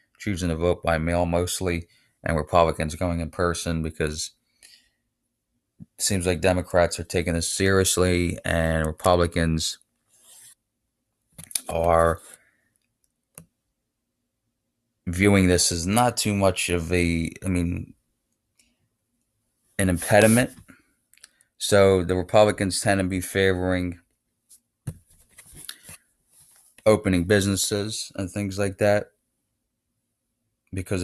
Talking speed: 95 wpm